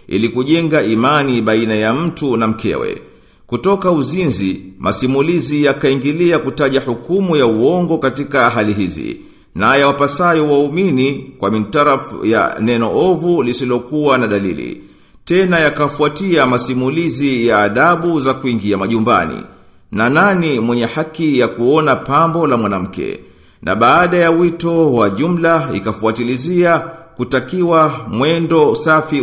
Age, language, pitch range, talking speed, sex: 50-69, Swahili, 120-165 Hz, 120 wpm, male